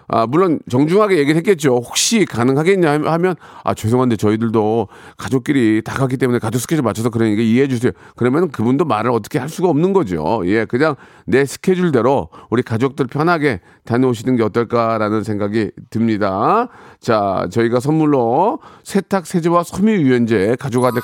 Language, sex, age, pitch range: Korean, male, 40-59, 110-175 Hz